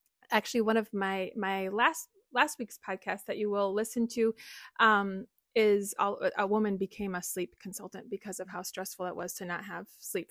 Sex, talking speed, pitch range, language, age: female, 190 wpm, 195-230 Hz, English, 20-39